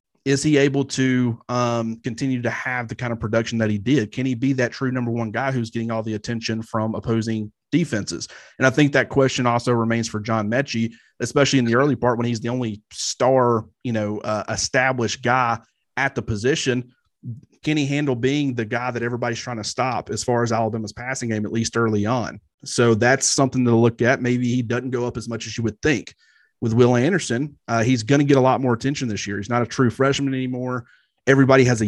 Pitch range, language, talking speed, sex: 115-130 Hz, English, 225 wpm, male